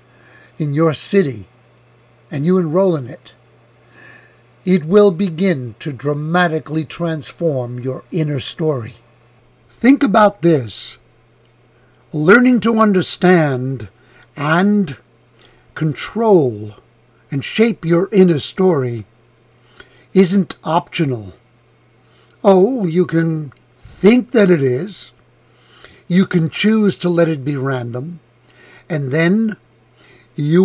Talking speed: 100 wpm